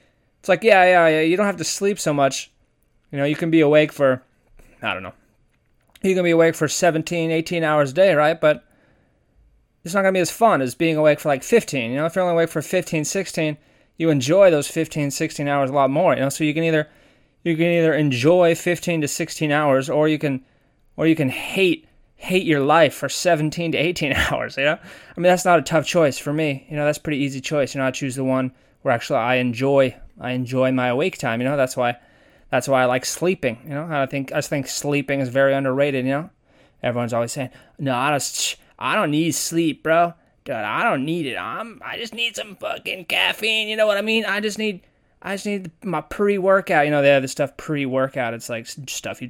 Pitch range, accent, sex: 130-175 Hz, American, male